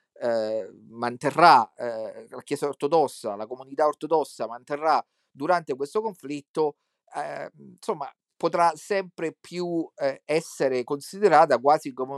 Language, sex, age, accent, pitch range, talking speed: Italian, male, 40-59, native, 135-185 Hz, 110 wpm